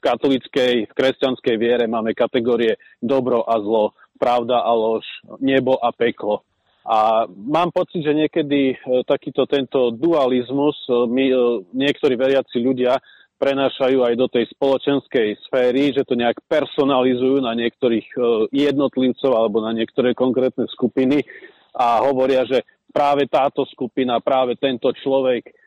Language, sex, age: Slovak, male, 40-59